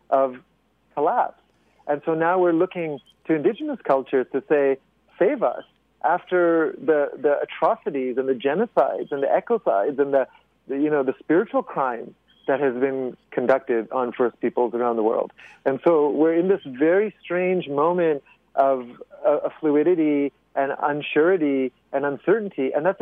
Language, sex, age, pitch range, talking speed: English, male, 50-69, 140-175 Hz, 155 wpm